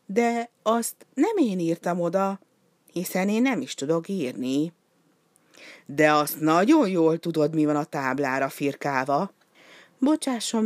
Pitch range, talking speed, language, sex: 155-230 Hz, 130 wpm, Hungarian, female